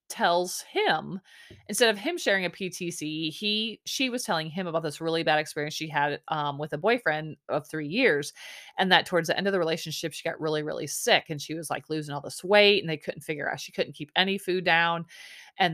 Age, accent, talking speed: 30-49, American, 230 wpm